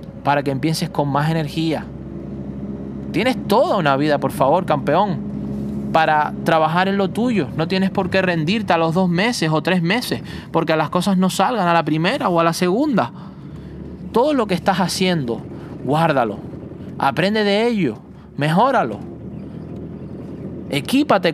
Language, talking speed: Spanish, 150 wpm